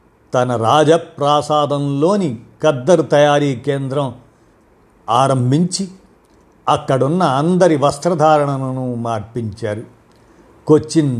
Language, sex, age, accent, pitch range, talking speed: Telugu, male, 50-69, native, 120-155 Hz, 60 wpm